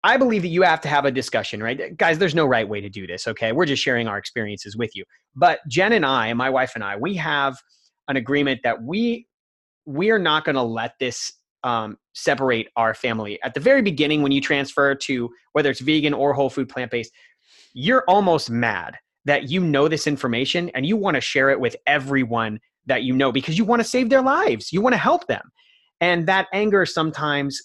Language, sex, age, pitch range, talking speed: English, male, 30-49, 120-155 Hz, 220 wpm